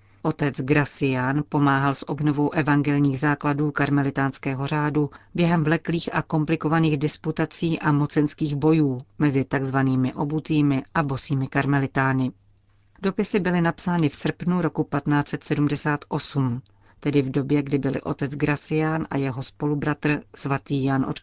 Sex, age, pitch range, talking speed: female, 40-59, 140-160 Hz, 120 wpm